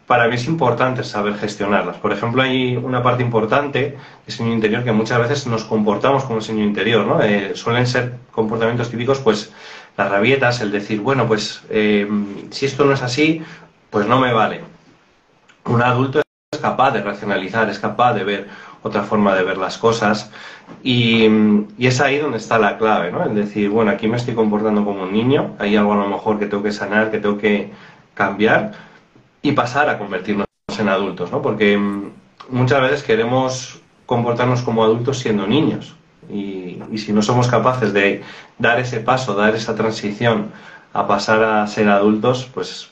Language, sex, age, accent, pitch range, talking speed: Spanish, male, 30-49, Spanish, 105-125 Hz, 180 wpm